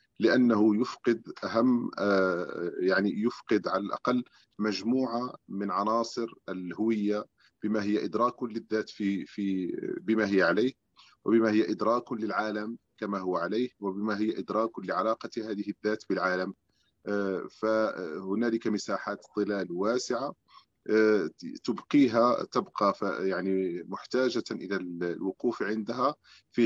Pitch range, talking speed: 95-115 Hz, 105 wpm